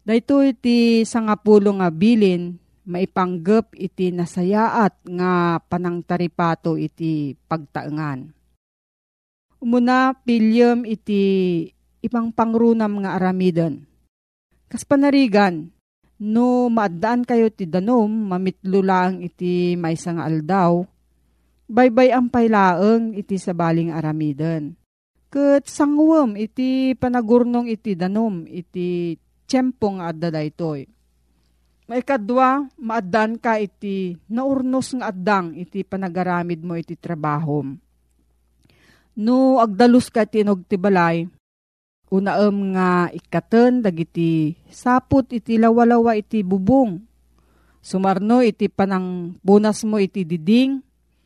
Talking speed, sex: 95 wpm, female